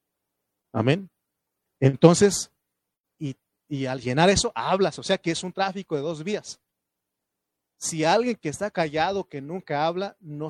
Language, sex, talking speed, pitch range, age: Spanish, male, 150 wpm, 135-190 Hz, 40-59